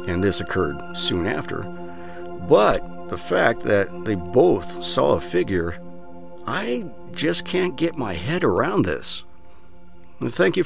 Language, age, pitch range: English, 50-69, 85-110 Hz